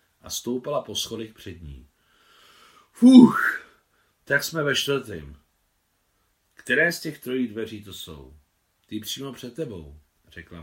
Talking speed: 130 wpm